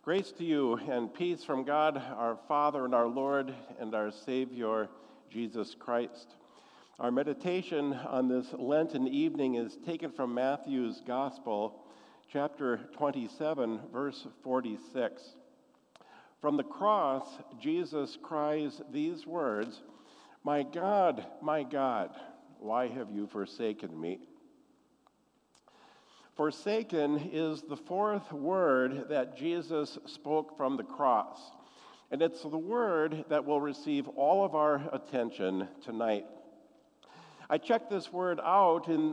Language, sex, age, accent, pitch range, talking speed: English, male, 50-69, American, 130-185 Hz, 120 wpm